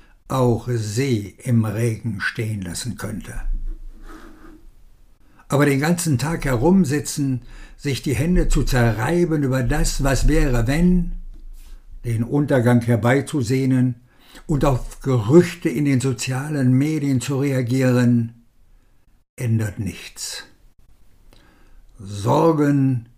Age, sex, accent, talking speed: 60-79, male, German, 95 wpm